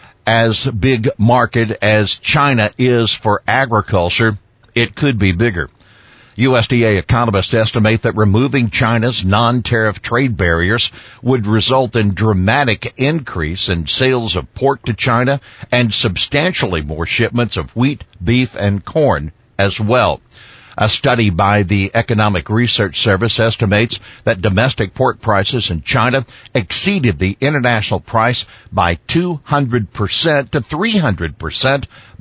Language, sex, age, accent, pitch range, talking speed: English, male, 60-79, American, 95-125 Hz, 120 wpm